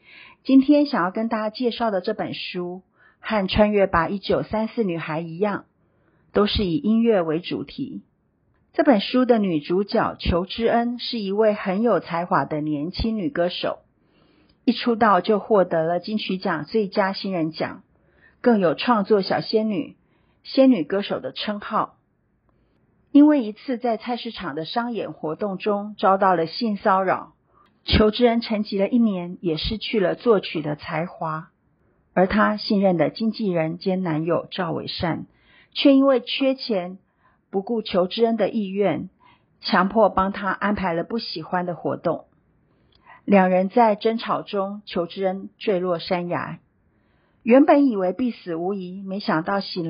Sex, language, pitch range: female, Chinese, 180-225 Hz